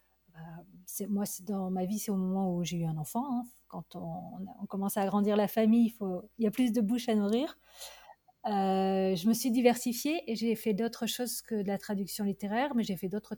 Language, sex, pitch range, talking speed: French, female, 195-230 Hz, 235 wpm